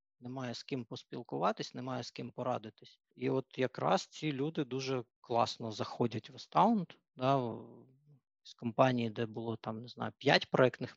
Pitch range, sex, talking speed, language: 115-140 Hz, male, 155 wpm, Ukrainian